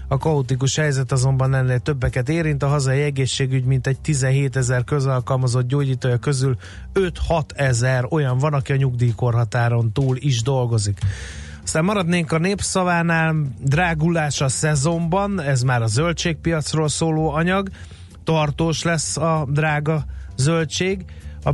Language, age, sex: Hungarian, 30-49, male